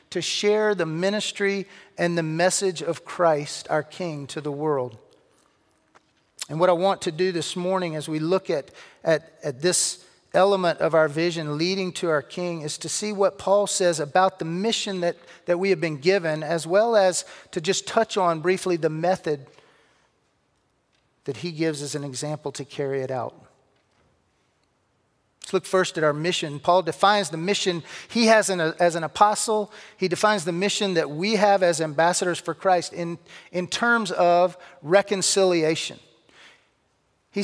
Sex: male